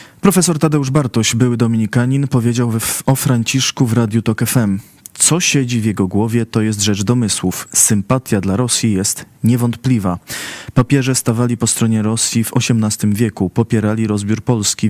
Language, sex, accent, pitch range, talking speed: Polish, male, native, 110-130 Hz, 155 wpm